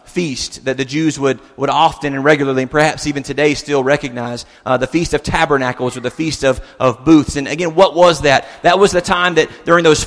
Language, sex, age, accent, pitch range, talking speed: English, male, 30-49, American, 140-175 Hz, 225 wpm